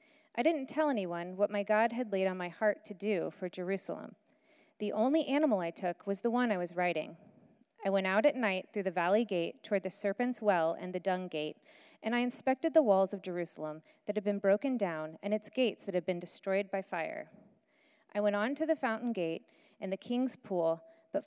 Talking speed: 215 wpm